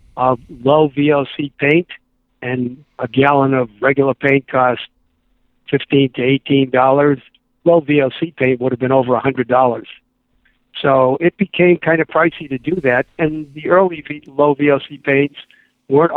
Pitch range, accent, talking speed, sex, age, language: 130-165 Hz, American, 145 wpm, male, 60-79, English